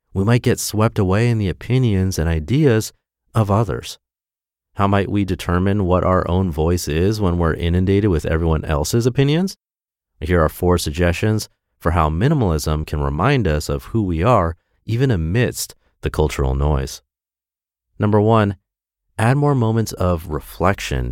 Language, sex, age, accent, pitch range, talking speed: English, male, 30-49, American, 80-100 Hz, 155 wpm